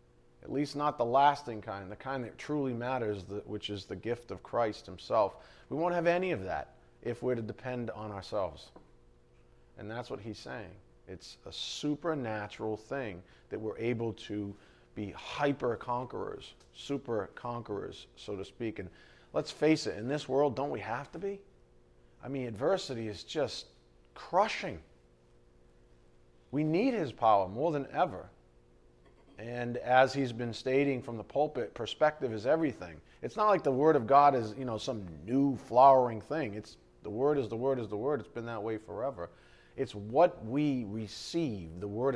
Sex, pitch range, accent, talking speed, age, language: male, 90-135 Hz, American, 170 wpm, 40-59, English